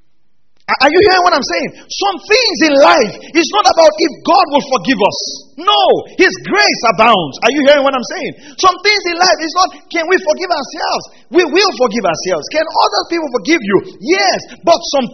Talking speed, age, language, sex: 200 wpm, 40-59, English, male